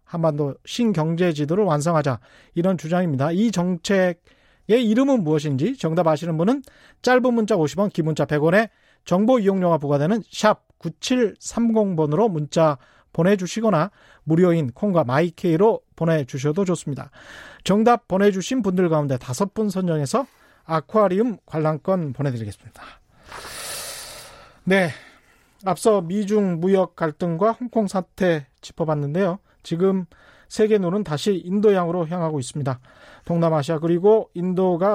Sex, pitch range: male, 160-215 Hz